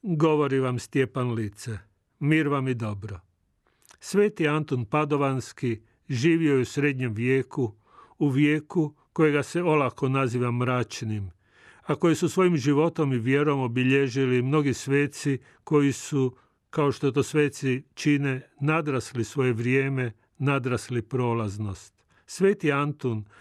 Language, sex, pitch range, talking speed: Croatian, male, 125-150 Hz, 120 wpm